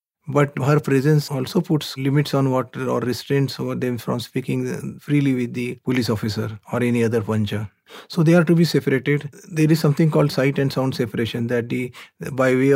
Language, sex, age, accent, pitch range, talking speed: English, male, 30-49, Indian, 115-140 Hz, 185 wpm